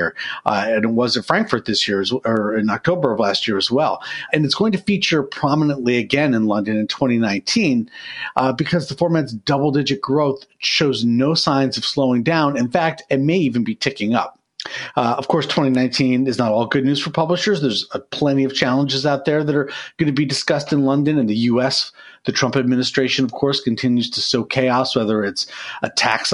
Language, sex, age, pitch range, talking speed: English, male, 40-59, 120-155 Hz, 200 wpm